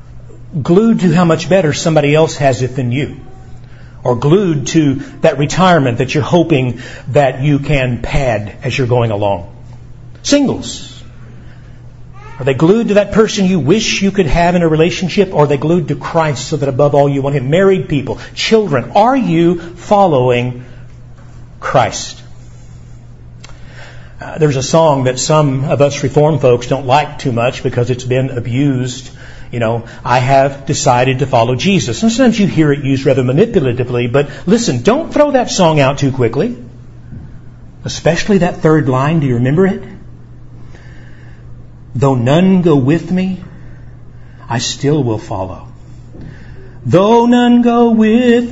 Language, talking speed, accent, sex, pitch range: English, 155 wpm, American, male, 125-175 Hz